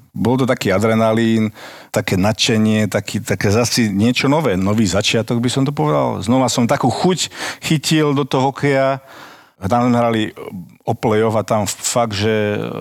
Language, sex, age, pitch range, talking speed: Slovak, male, 50-69, 95-115 Hz, 150 wpm